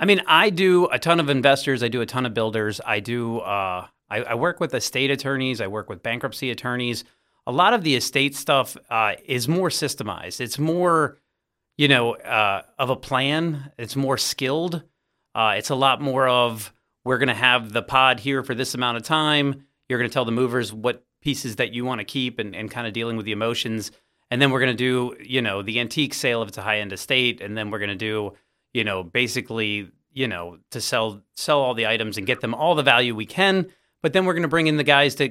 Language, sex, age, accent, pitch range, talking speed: English, male, 30-49, American, 115-140 Hz, 235 wpm